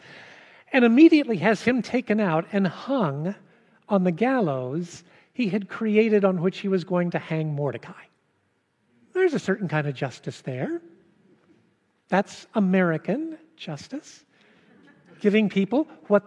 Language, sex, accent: English, male, American